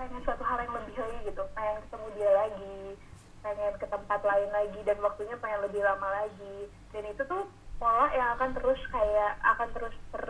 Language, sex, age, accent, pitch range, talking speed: Indonesian, female, 20-39, native, 205-270 Hz, 185 wpm